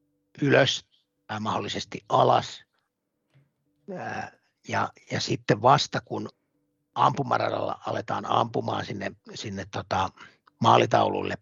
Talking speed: 80 wpm